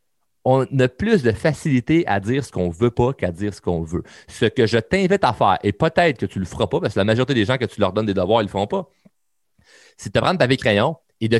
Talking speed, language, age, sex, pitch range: 300 wpm, French, 30-49, male, 105-140 Hz